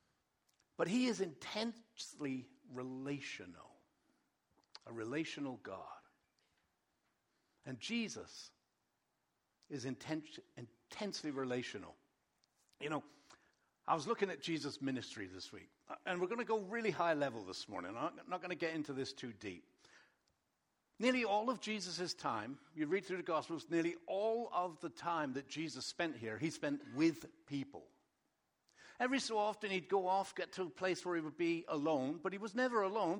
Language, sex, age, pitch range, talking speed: English, male, 60-79, 155-210 Hz, 155 wpm